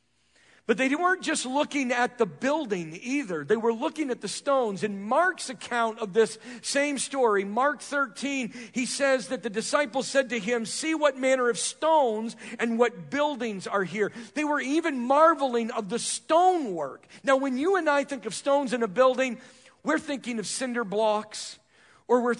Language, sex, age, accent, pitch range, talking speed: English, male, 50-69, American, 205-275 Hz, 180 wpm